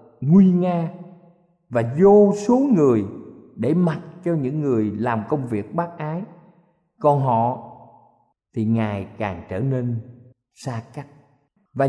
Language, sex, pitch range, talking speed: Vietnamese, male, 115-175 Hz, 130 wpm